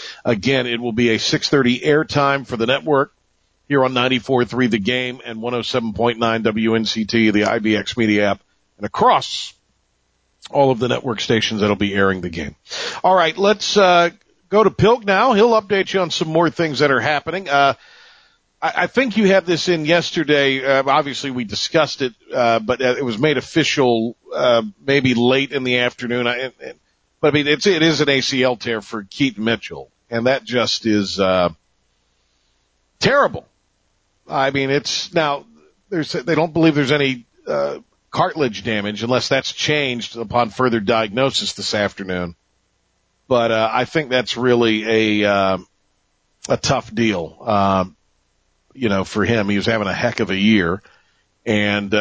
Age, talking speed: 50-69, 165 wpm